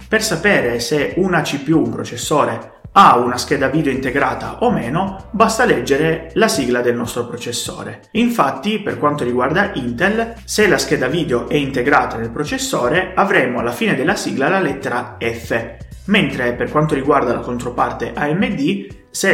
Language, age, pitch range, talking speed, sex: Italian, 30-49, 120-175 Hz, 155 wpm, male